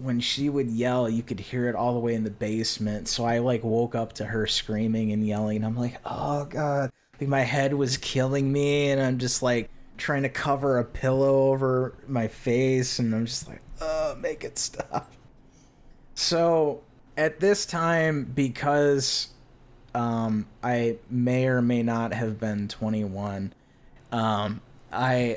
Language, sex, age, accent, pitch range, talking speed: English, male, 20-39, American, 105-130 Hz, 170 wpm